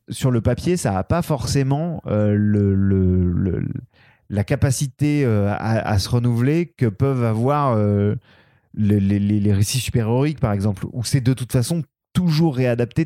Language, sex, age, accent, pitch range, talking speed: French, male, 30-49, French, 105-140 Hz, 165 wpm